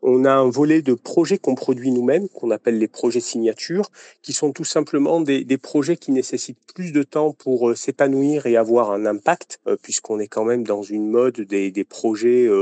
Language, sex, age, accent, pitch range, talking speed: French, male, 40-59, French, 120-165 Hz, 200 wpm